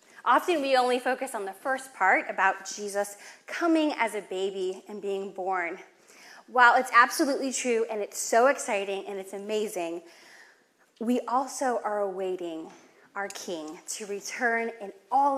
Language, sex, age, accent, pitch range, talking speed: English, female, 10-29, American, 200-260 Hz, 150 wpm